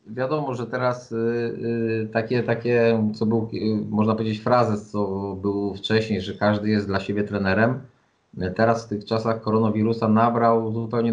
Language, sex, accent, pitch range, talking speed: Polish, male, native, 105-120 Hz, 140 wpm